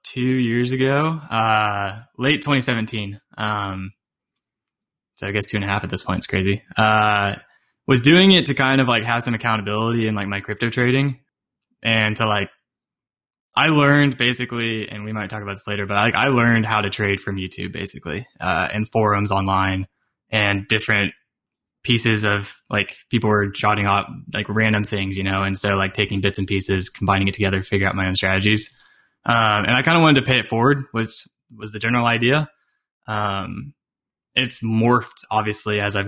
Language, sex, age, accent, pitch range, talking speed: English, male, 10-29, American, 100-120 Hz, 185 wpm